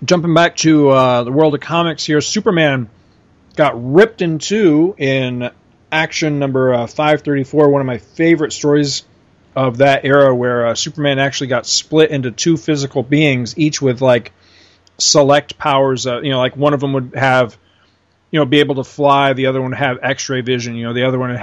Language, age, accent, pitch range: English, 40-59, American, 115-145 Hz